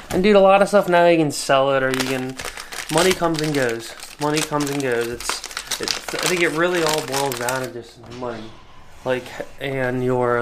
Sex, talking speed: male, 215 wpm